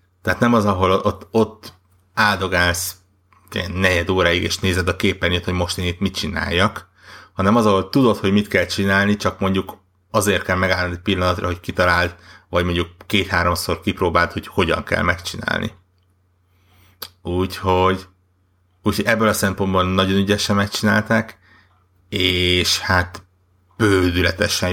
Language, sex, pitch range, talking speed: Hungarian, male, 90-100 Hz, 135 wpm